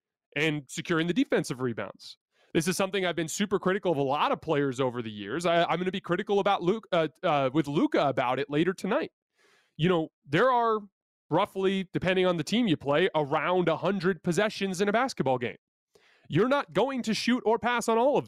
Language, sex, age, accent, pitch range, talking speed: English, male, 30-49, American, 140-200 Hz, 210 wpm